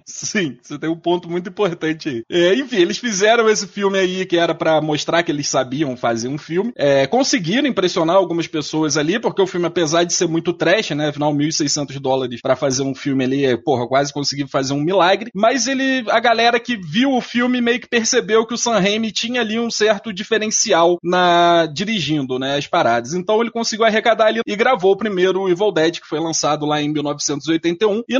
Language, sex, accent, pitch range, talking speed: Portuguese, male, Brazilian, 150-220 Hz, 205 wpm